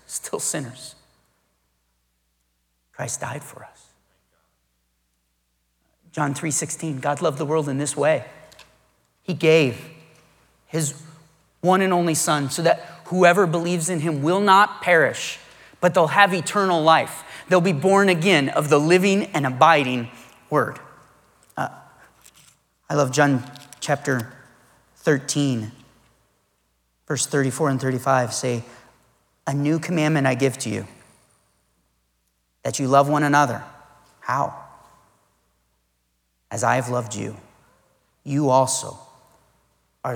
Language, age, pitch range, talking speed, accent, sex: English, 30-49, 100-155 Hz, 115 wpm, American, male